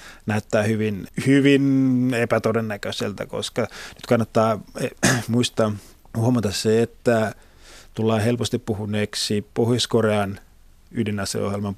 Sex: male